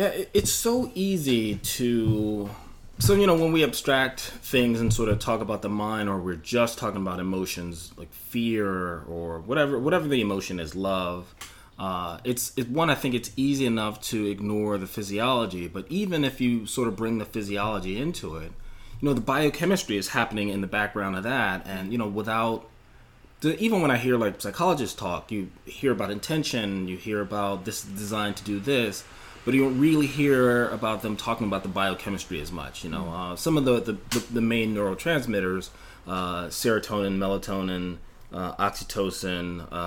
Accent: American